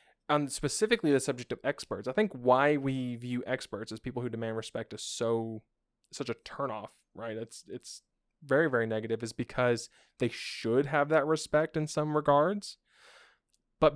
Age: 20-39